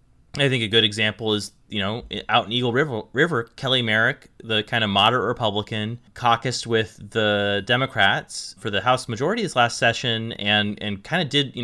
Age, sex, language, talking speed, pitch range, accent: 30-49, male, English, 185 wpm, 105-130 Hz, American